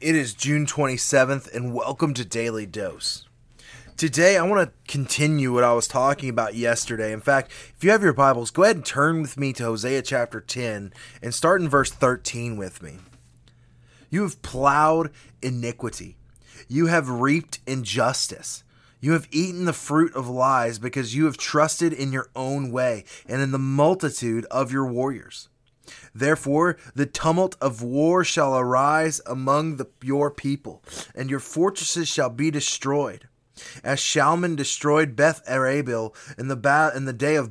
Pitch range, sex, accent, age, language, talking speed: 125-150 Hz, male, American, 20-39, English, 165 wpm